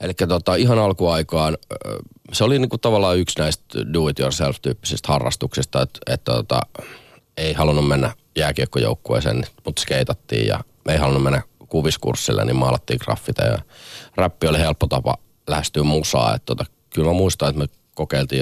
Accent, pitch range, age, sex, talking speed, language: native, 70-95 Hz, 30-49, male, 145 wpm, Finnish